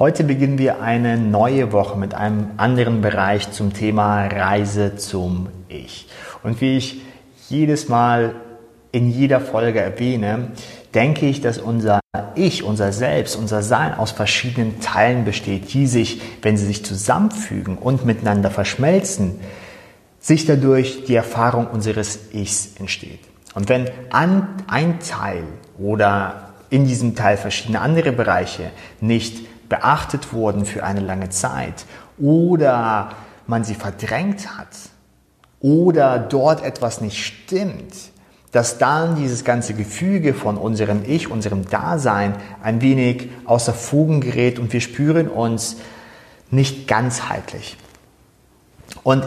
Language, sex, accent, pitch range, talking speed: German, male, German, 105-130 Hz, 125 wpm